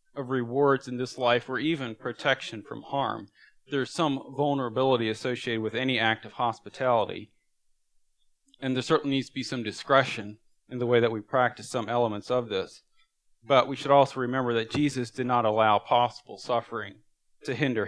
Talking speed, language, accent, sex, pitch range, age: 170 wpm, English, American, male, 115-135 Hz, 40-59